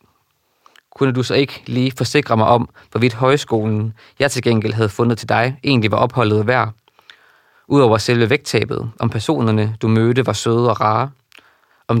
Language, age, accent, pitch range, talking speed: Danish, 20-39, native, 110-125 Hz, 165 wpm